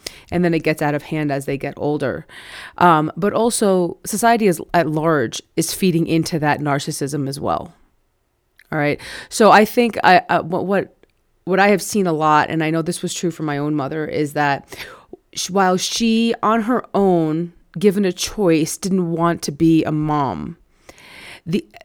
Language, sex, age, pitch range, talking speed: English, female, 30-49, 165-195 Hz, 185 wpm